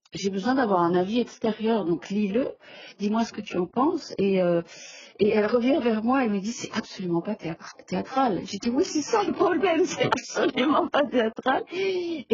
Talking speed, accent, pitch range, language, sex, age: 215 wpm, French, 190-255 Hz, French, female, 40-59